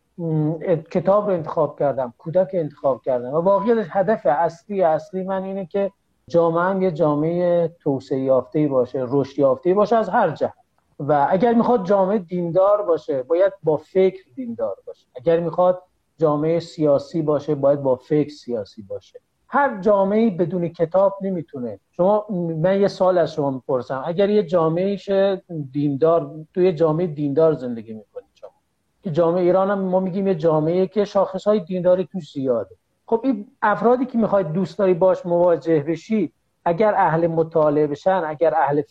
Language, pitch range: Persian, 160-205 Hz